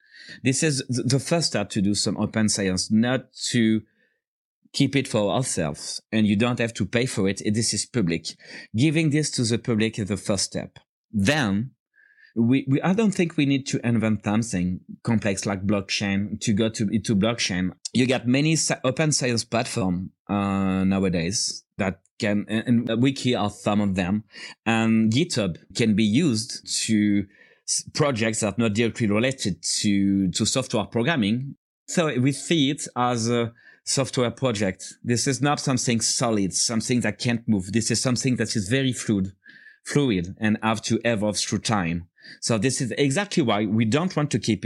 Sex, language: male, English